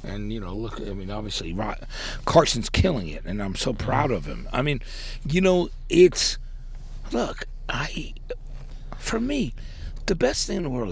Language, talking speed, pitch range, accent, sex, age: English, 170 wpm, 95-135 Hz, American, male, 60-79